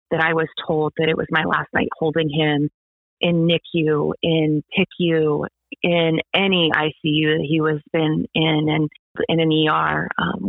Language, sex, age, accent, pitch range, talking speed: English, female, 30-49, American, 165-205 Hz, 165 wpm